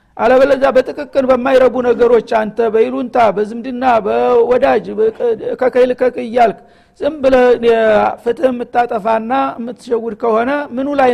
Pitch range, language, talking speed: 225-260 Hz, Amharic, 90 wpm